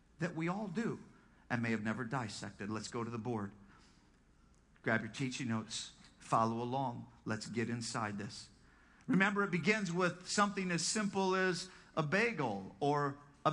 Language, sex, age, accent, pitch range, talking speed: English, male, 50-69, American, 180-255 Hz, 160 wpm